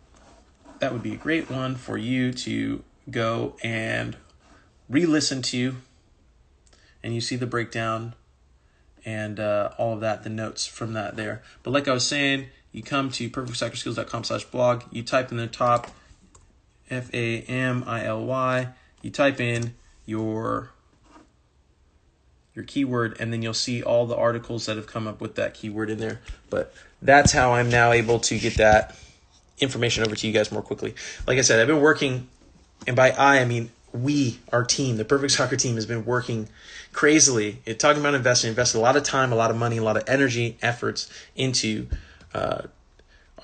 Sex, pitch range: male, 110-125 Hz